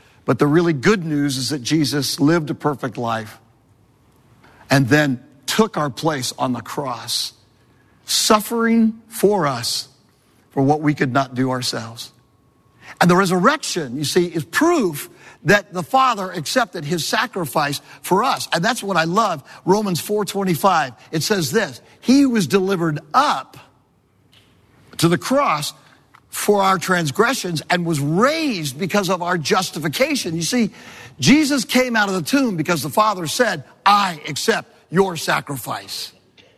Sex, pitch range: male, 140-210 Hz